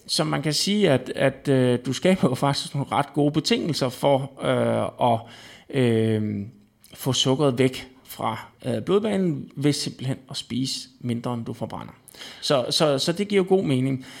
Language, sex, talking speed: Danish, male, 170 wpm